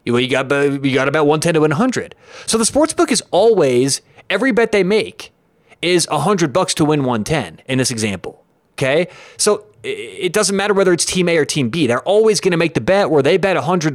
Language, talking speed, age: English, 225 wpm, 30-49